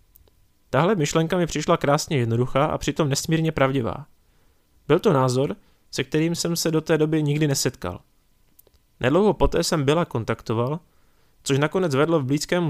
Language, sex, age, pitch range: Czech, male, 20-39, 120-155 Hz